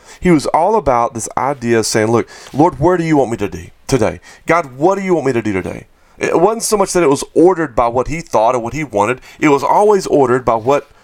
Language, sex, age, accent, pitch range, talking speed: English, male, 40-59, American, 115-150 Hz, 260 wpm